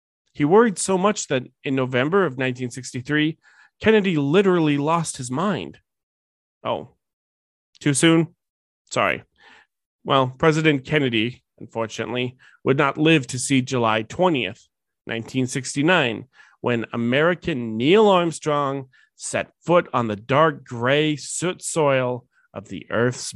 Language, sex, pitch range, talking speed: English, male, 125-165 Hz, 115 wpm